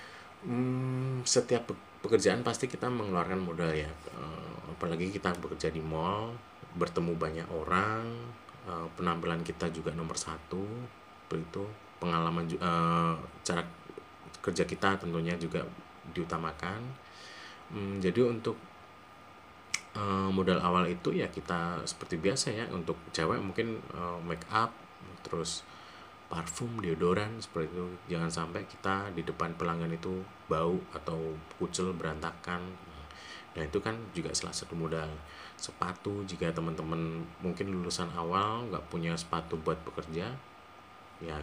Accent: native